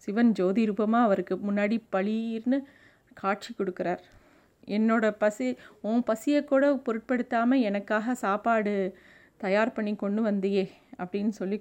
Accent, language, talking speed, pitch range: native, Tamil, 115 wpm, 195-240 Hz